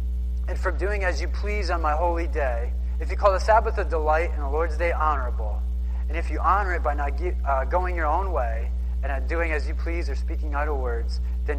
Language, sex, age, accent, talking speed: English, male, 30-49, American, 240 wpm